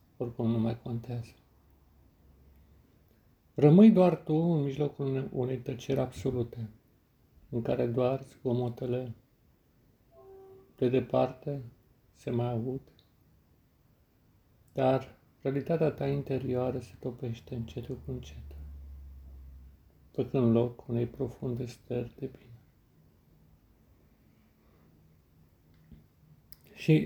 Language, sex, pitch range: Romanian, male, 95-130 Hz